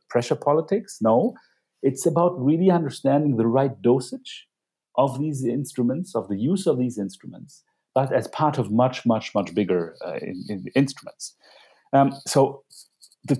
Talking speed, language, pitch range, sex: 150 wpm, English, 115-165 Hz, male